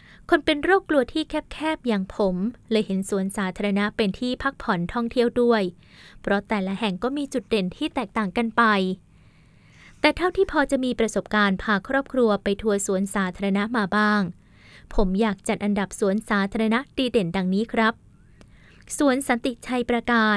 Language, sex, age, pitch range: Thai, female, 20-39, 200-250 Hz